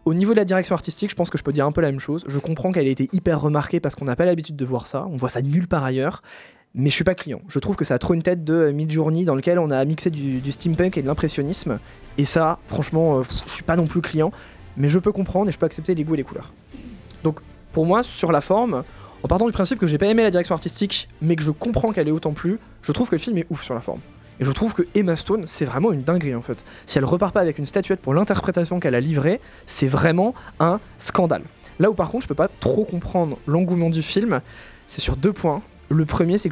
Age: 20-39